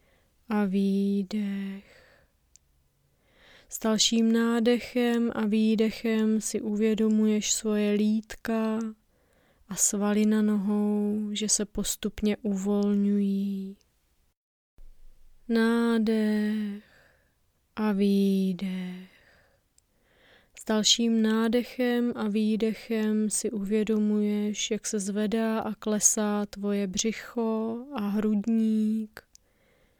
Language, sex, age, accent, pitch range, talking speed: Czech, female, 20-39, native, 205-220 Hz, 75 wpm